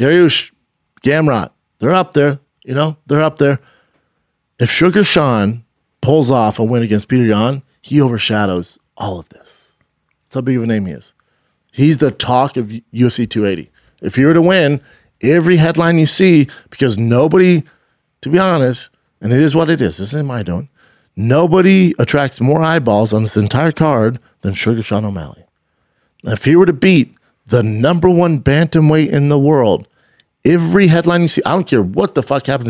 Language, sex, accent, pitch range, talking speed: English, male, American, 105-150 Hz, 180 wpm